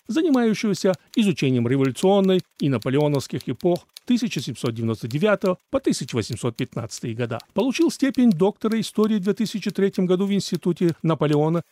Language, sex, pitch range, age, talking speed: Russian, male, 140-195 Hz, 40-59, 100 wpm